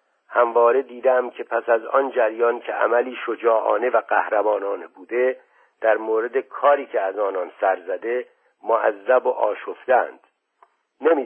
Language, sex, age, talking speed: Persian, male, 50-69, 135 wpm